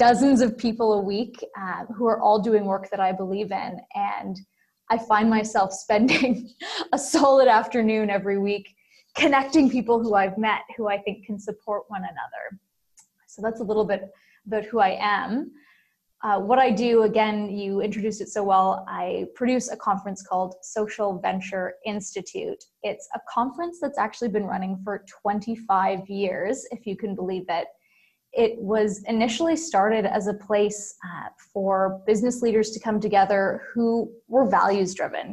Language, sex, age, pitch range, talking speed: English, female, 20-39, 195-230 Hz, 165 wpm